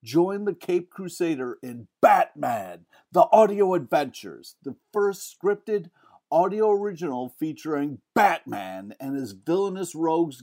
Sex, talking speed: male, 115 wpm